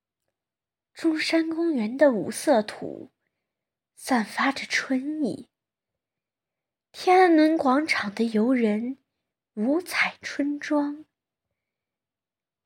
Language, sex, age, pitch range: Chinese, female, 20-39, 225-300 Hz